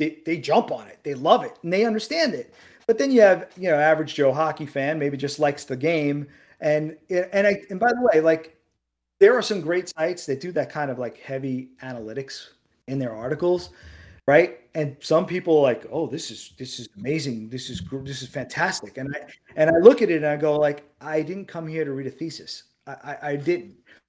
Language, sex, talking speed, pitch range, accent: English, male, 225 wpm, 145-215 Hz, American